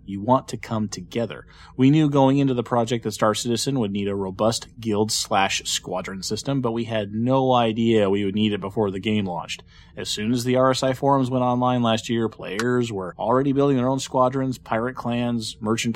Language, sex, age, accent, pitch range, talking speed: English, male, 30-49, American, 105-130 Hz, 200 wpm